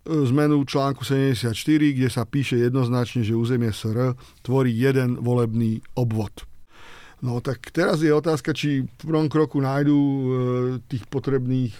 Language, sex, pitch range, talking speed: Slovak, male, 125-145 Hz, 135 wpm